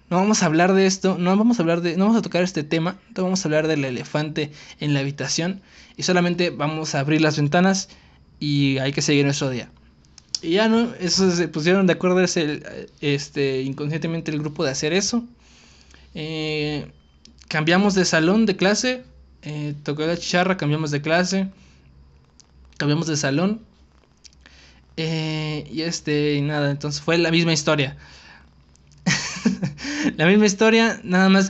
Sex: male